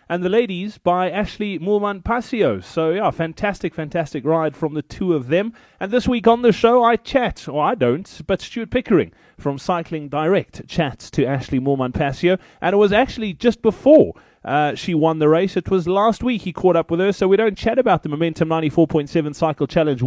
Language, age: English, 30-49